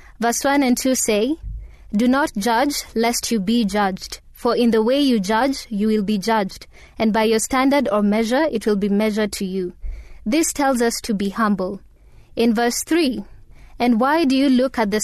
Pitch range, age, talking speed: 210-260 Hz, 20-39, 200 wpm